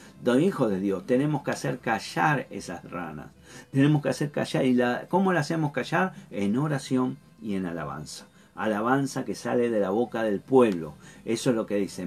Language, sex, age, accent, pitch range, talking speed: Spanish, male, 50-69, Argentinian, 110-145 Hz, 190 wpm